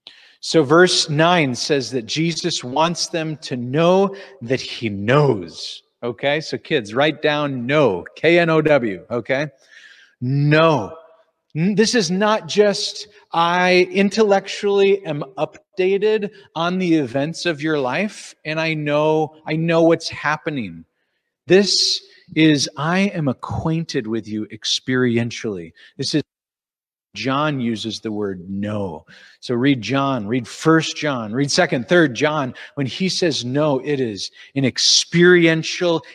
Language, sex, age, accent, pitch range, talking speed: English, male, 30-49, American, 130-175 Hz, 125 wpm